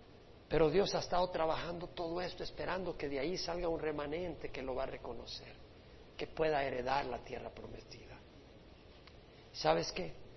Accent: Mexican